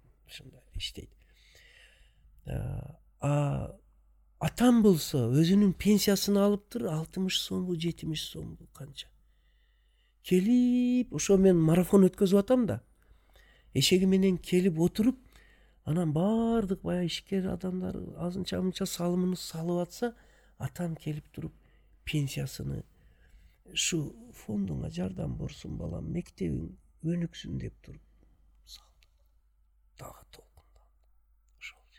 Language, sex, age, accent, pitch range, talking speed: Russian, male, 60-79, Turkish, 115-185 Hz, 95 wpm